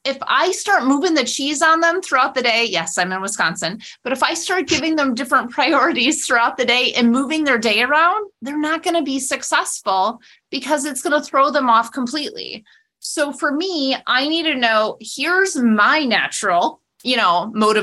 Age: 30-49